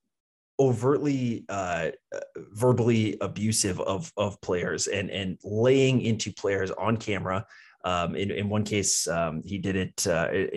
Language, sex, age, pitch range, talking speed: English, male, 20-39, 95-110 Hz, 135 wpm